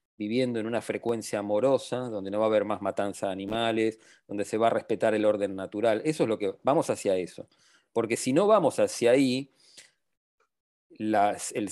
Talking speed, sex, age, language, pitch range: 185 wpm, male, 40-59, English, 100-130 Hz